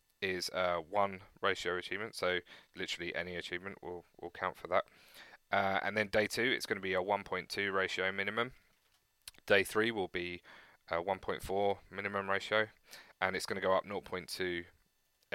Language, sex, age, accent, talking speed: English, male, 20-39, British, 165 wpm